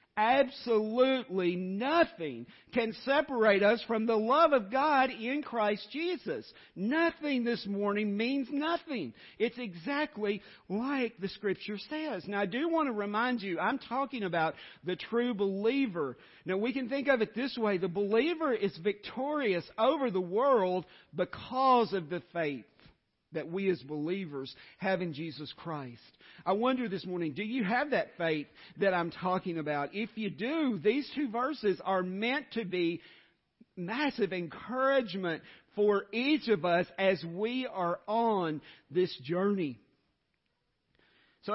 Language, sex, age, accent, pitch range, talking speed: English, male, 50-69, American, 170-235 Hz, 145 wpm